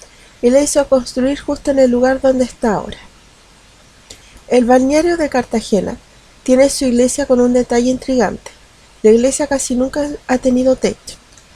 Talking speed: 150 wpm